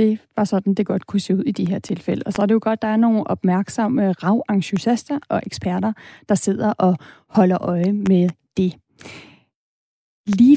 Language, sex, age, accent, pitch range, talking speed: Danish, female, 30-49, native, 190-220 Hz, 185 wpm